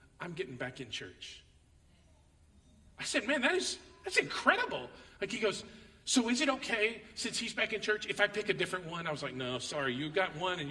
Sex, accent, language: male, American, English